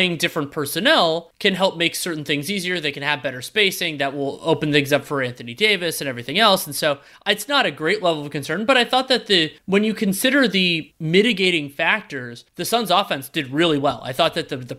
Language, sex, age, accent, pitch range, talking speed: English, male, 30-49, American, 150-195 Hz, 225 wpm